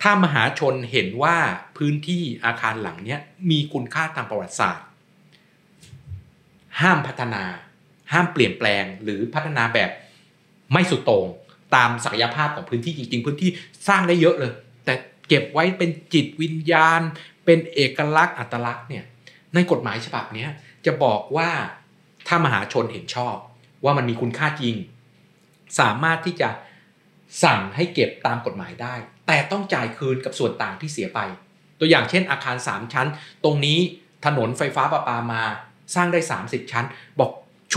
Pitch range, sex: 120-170 Hz, male